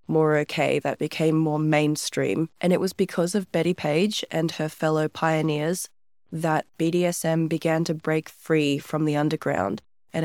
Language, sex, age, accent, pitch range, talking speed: English, female, 20-39, Australian, 155-180 Hz, 160 wpm